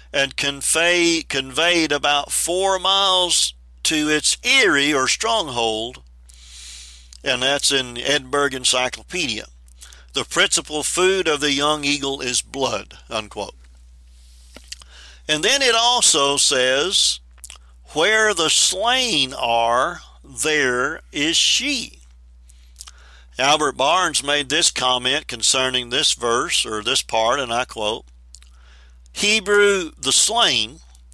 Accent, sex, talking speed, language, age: American, male, 110 wpm, English, 50-69